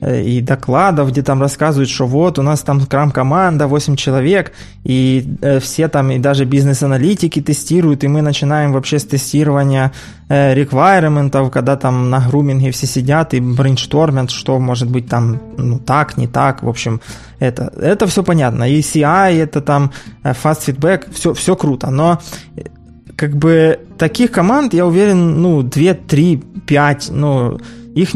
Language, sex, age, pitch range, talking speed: Ukrainian, male, 20-39, 130-160 Hz, 160 wpm